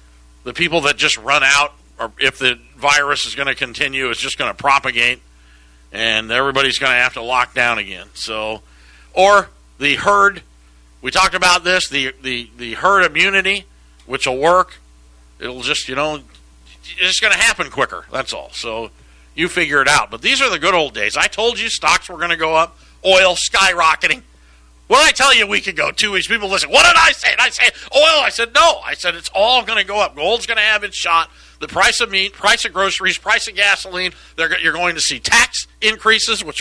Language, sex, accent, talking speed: English, male, American, 220 wpm